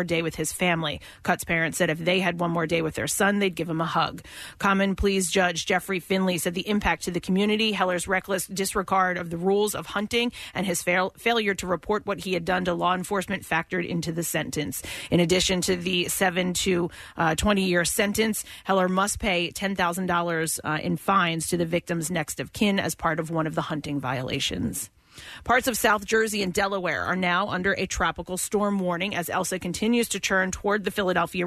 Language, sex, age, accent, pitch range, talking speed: English, female, 30-49, American, 175-200 Hz, 210 wpm